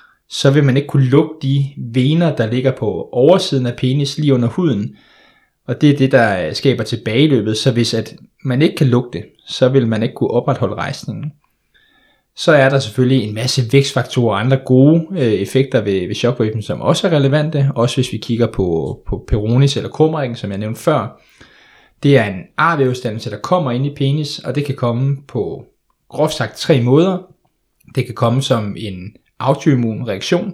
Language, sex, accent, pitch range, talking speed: Danish, male, native, 115-145 Hz, 185 wpm